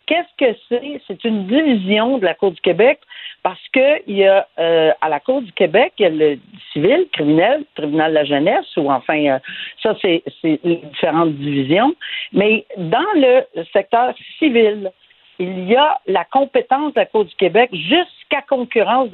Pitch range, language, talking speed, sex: 180-260 Hz, French, 180 wpm, female